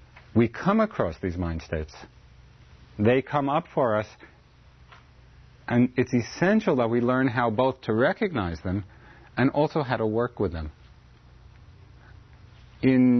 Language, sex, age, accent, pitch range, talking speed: English, male, 40-59, American, 100-130 Hz, 135 wpm